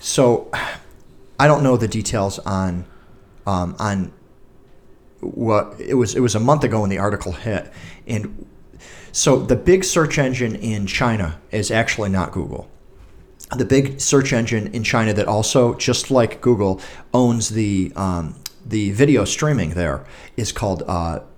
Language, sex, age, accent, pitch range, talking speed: English, male, 40-59, American, 95-125 Hz, 150 wpm